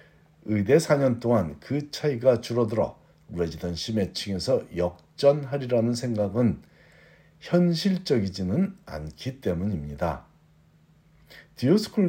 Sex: male